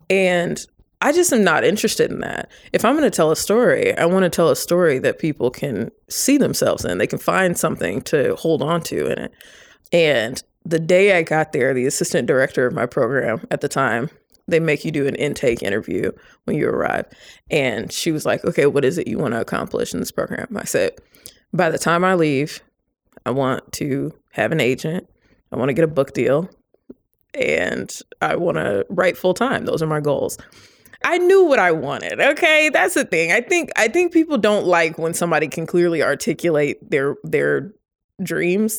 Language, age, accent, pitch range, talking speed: English, 20-39, American, 165-235 Hz, 195 wpm